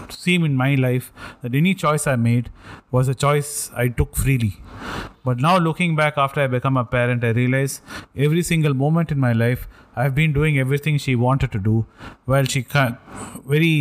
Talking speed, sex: 195 wpm, male